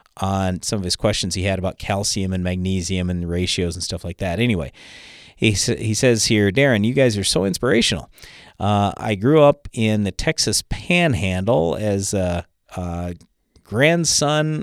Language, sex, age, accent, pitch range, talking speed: English, male, 40-59, American, 95-130 Hz, 170 wpm